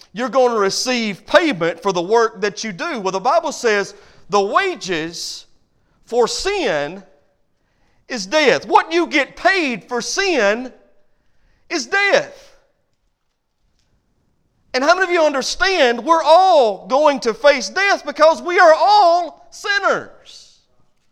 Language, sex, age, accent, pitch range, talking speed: English, male, 40-59, American, 215-300 Hz, 130 wpm